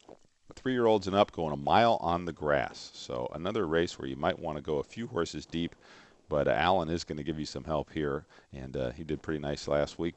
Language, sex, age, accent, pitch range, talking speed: English, male, 40-59, American, 75-100 Hz, 240 wpm